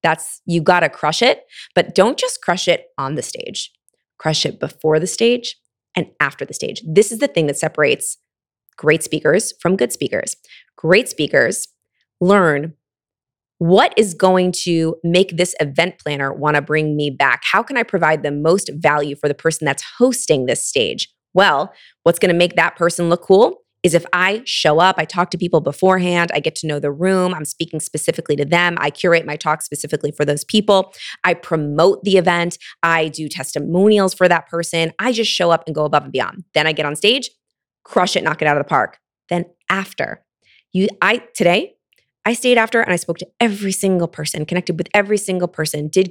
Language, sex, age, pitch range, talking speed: English, female, 20-39, 155-200 Hz, 200 wpm